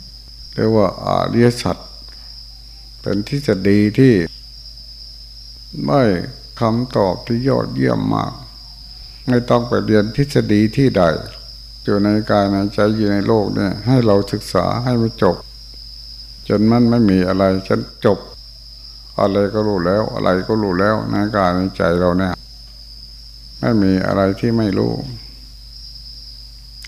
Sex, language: male, Thai